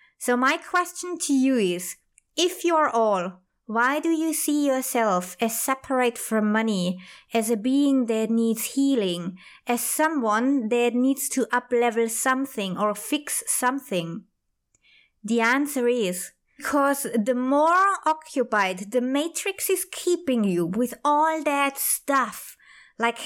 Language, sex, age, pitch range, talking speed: English, female, 20-39, 225-275 Hz, 130 wpm